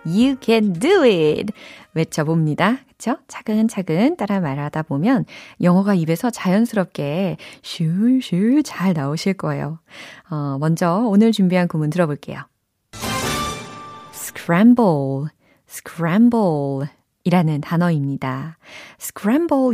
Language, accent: Korean, native